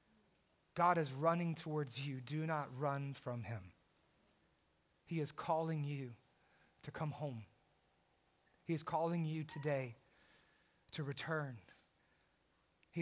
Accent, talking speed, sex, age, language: American, 115 wpm, male, 30-49, English